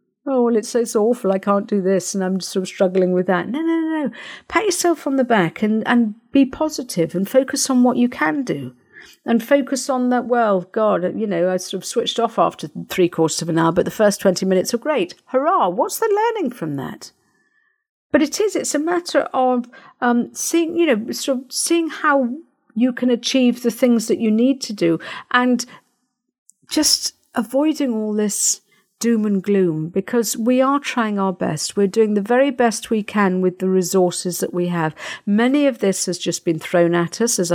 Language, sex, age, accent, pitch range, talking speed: English, female, 50-69, British, 185-265 Hz, 210 wpm